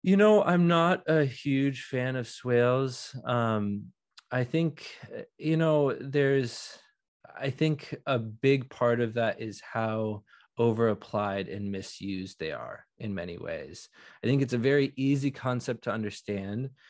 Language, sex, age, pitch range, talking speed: English, male, 20-39, 110-135 Hz, 145 wpm